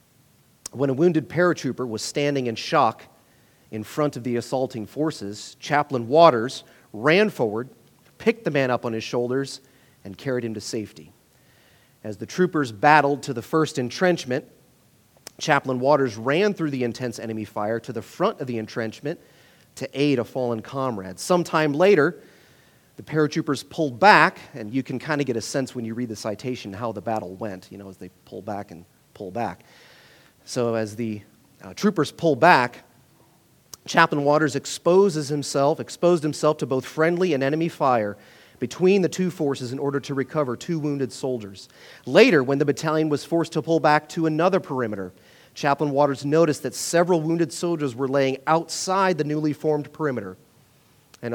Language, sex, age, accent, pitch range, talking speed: English, male, 40-59, American, 115-155 Hz, 170 wpm